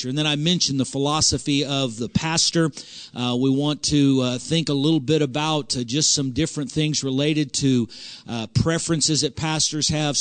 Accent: American